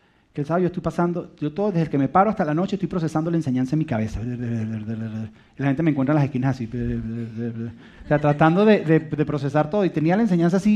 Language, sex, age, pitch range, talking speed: Spanish, male, 30-49, 135-195 Hz, 245 wpm